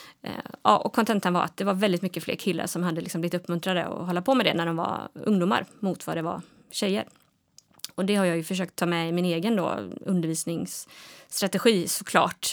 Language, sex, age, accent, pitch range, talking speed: Swedish, female, 20-39, native, 175-200 Hz, 210 wpm